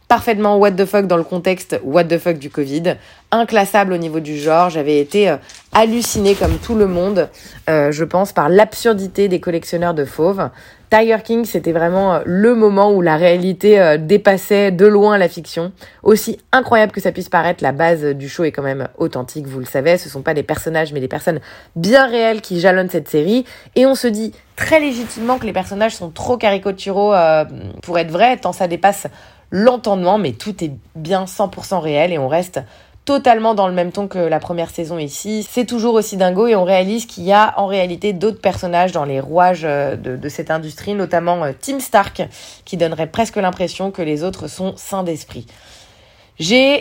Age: 30-49